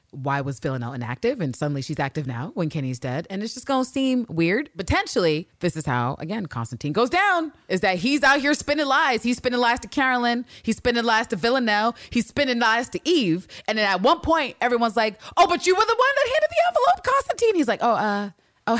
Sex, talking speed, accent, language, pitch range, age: female, 230 wpm, American, English, 145-245 Hz, 30-49